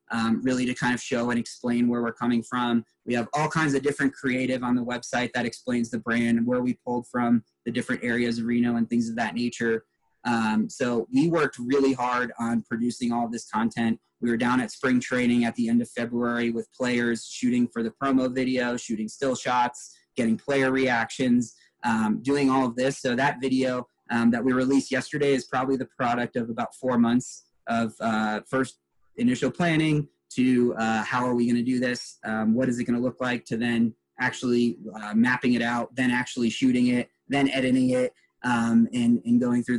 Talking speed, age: 210 wpm, 20-39